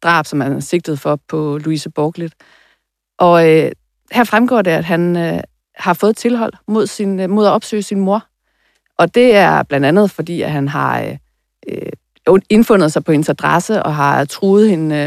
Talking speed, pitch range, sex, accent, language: 180 wpm, 155-195 Hz, female, native, Danish